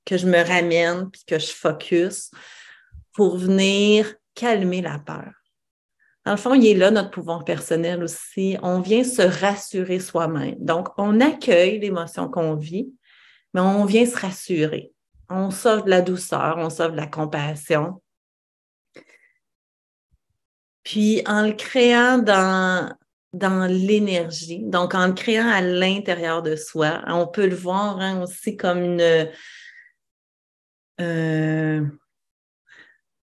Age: 30-49